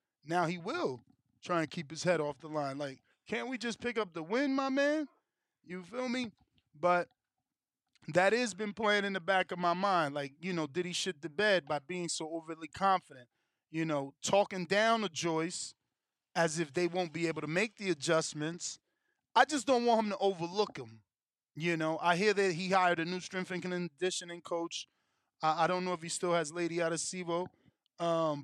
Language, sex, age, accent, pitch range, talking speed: English, male, 20-39, American, 155-190 Hz, 200 wpm